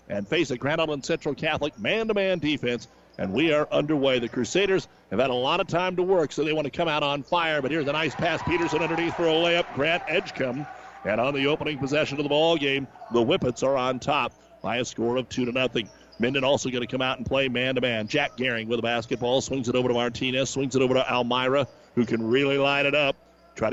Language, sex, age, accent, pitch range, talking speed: English, male, 50-69, American, 120-145 Hz, 240 wpm